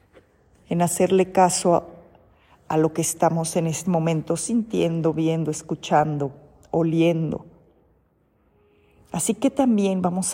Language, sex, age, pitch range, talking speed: Spanish, female, 40-59, 170-210 Hz, 110 wpm